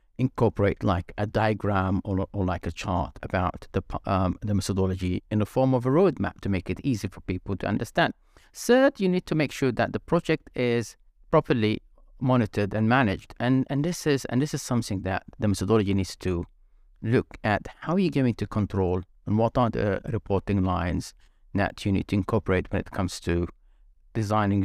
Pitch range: 95-120 Hz